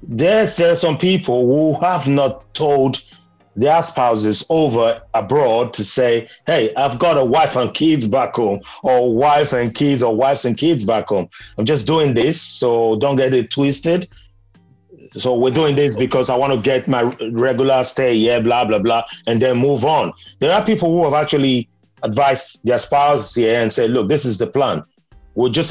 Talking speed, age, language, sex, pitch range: 190 wpm, 30-49, English, male, 110-145 Hz